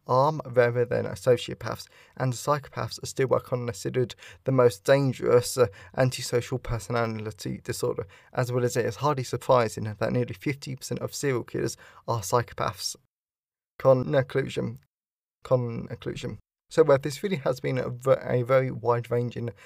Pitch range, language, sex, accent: 120-140 Hz, English, male, British